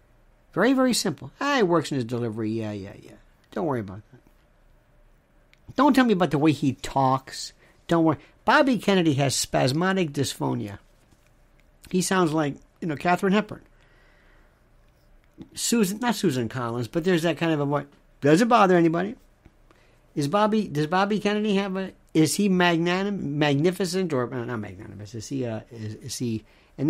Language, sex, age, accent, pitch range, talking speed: English, male, 60-79, American, 130-200 Hz, 165 wpm